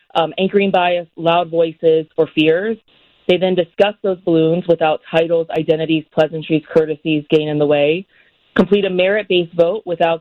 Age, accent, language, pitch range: 20-39, American, English, 160-180 Hz